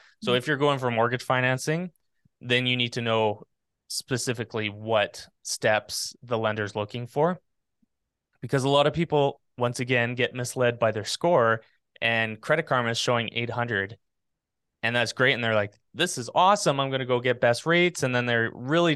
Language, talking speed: English, 180 wpm